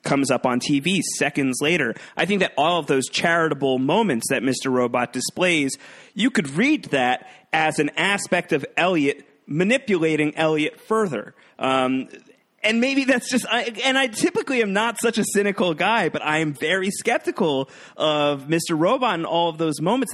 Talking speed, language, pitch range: 170 wpm, English, 115-155 Hz